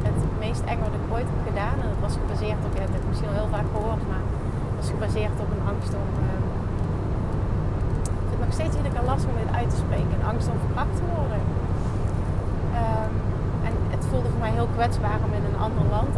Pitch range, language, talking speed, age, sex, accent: 95-115 Hz, Dutch, 230 wpm, 30-49, female, Dutch